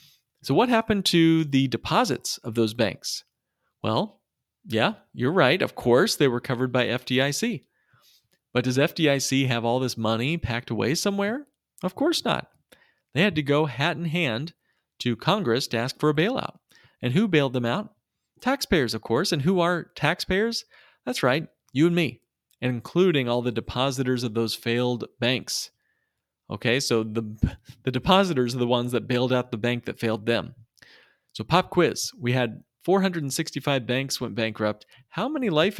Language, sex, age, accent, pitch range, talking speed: English, male, 40-59, American, 120-165 Hz, 170 wpm